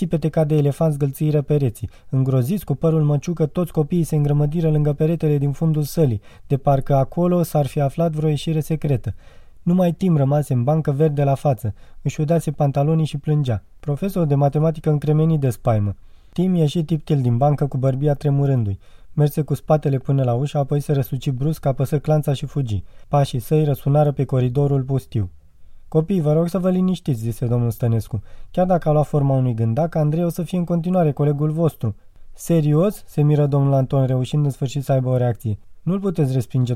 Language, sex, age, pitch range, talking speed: Romanian, male, 20-39, 125-160 Hz, 185 wpm